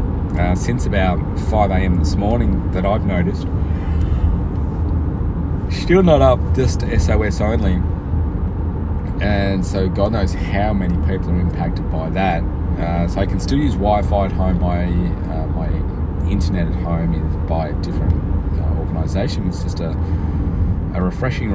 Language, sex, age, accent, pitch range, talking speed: English, male, 30-49, Australian, 80-95 Hz, 150 wpm